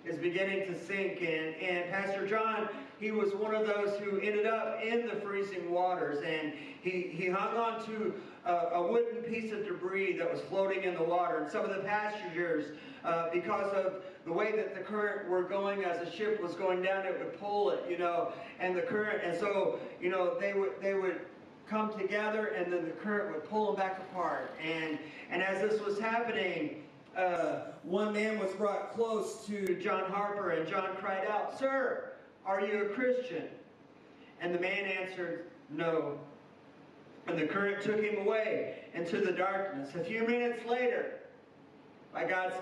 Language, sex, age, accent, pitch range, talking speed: English, male, 40-59, American, 175-210 Hz, 185 wpm